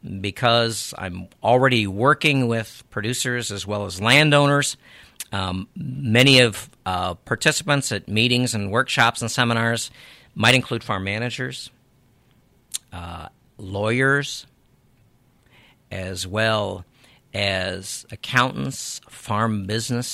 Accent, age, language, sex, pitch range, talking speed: American, 50-69, English, male, 105-130 Hz, 100 wpm